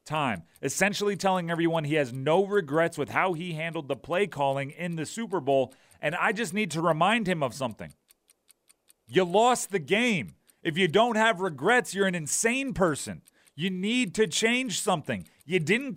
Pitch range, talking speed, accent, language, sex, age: 165-215 Hz, 180 wpm, American, English, male, 40-59